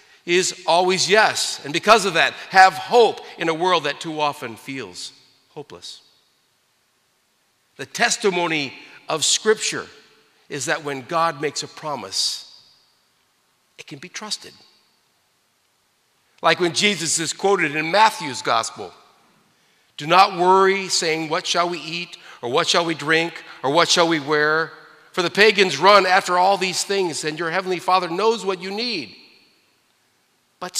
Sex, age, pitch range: male, 50-69, 155-200 Hz